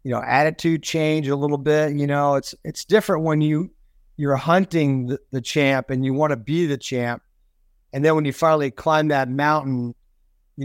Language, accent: English, American